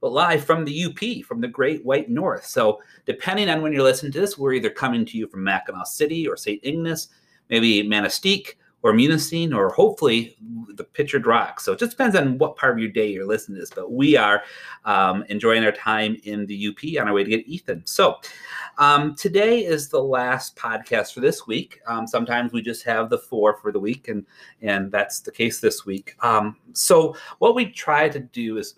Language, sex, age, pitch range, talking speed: English, male, 30-49, 105-165 Hz, 215 wpm